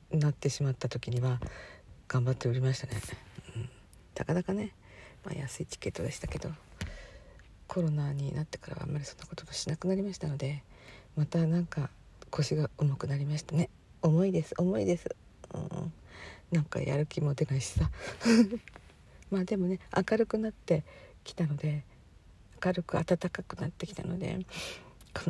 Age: 50-69